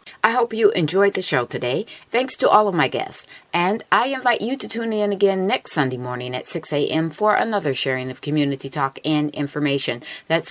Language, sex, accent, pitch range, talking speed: English, female, American, 150-215 Hz, 205 wpm